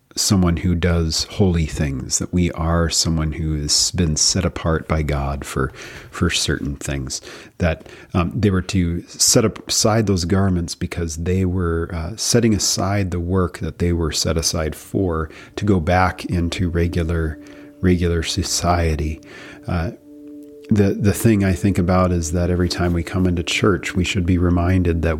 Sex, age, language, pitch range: male, 40-59, English, 80-95 Hz